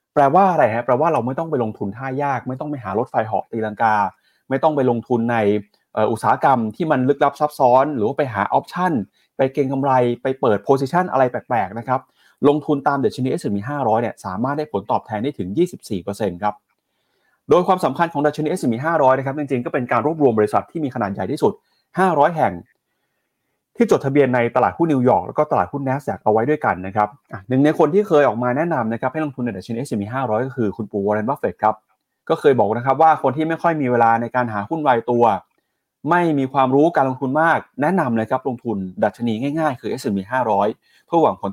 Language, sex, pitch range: Thai, male, 115-145 Hz